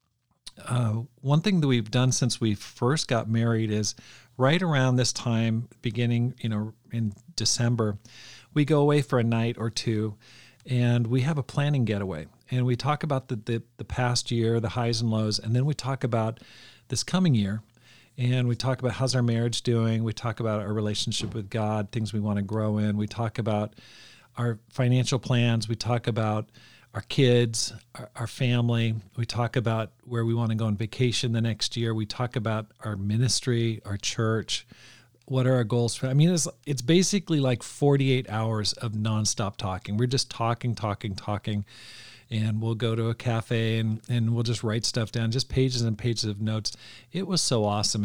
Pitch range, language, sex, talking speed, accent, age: 110-125 Hz, English, male, 195 wpm, American, 40-59